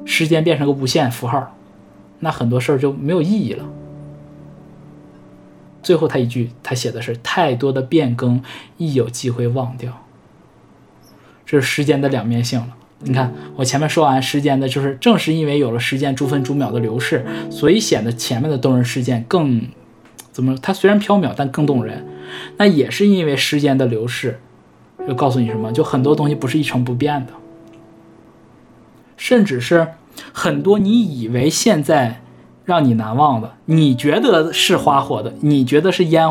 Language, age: Chinese, 20-39